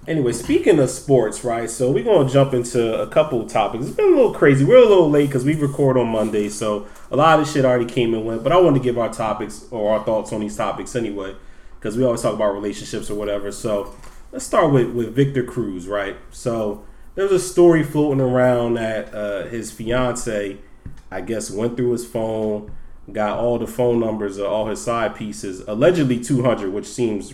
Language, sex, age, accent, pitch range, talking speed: English, male, 30-49, American, 105-130 Hz, 215 wpm